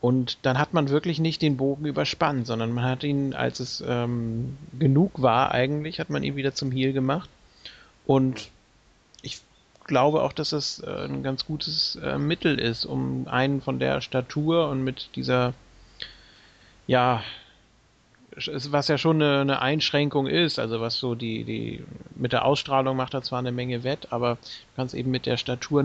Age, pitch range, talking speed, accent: 40-59, 125-145 Hz, 175 wpm, German